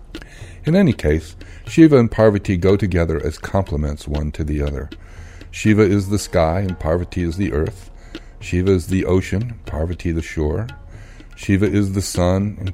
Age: 60-79